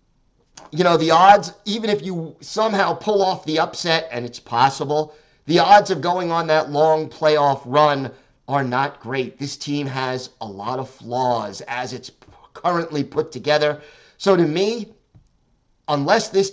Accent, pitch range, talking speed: American, 140-170 Hz, 160 wpm